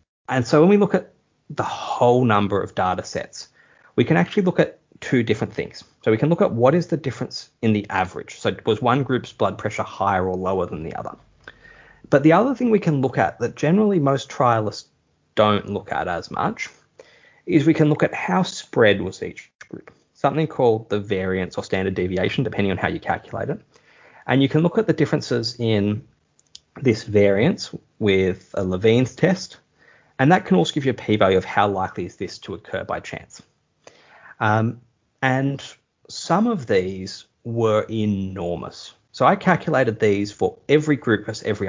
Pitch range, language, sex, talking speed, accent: 100-145 Hz, English, male, 190 wpm, Australian